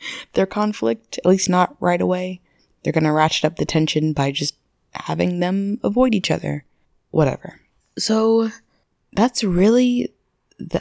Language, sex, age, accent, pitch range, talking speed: English, female, 20-39, American, 145-205 Hz, 145 wpm